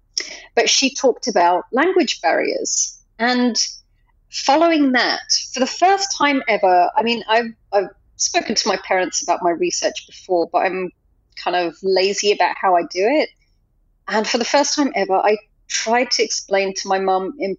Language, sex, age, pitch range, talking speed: English, female, 30-49, 190-290 Hz, 170 wpm